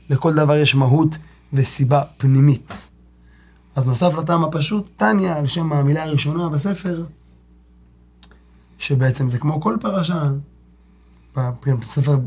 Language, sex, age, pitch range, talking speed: Hebrew, male, 30-49, 125-160 Hz, 110 wpm